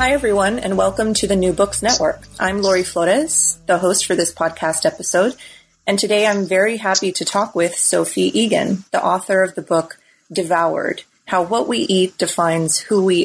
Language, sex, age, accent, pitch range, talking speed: English, female, 30-49, American, 175-210 Hz, 185 wpm